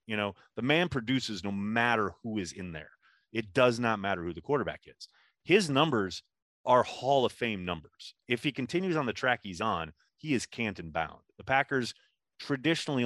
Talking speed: 190 wpm